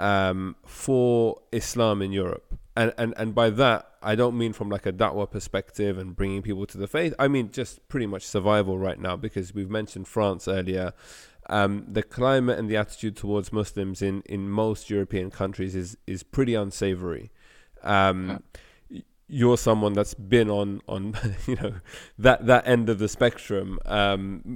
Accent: British